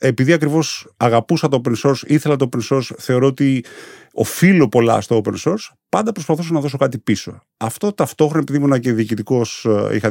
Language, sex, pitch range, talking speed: Greek, male, 115-160 Hz, 180 wpm